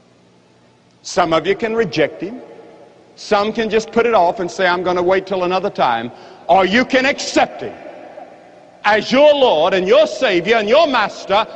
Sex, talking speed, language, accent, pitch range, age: male, 180 wpm, English, American, 180-240 Hz, 60-79